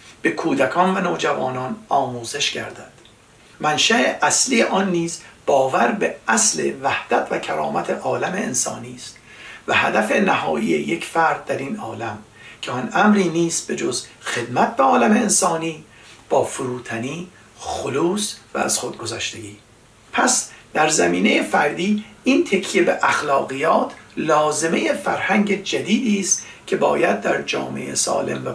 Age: 60-79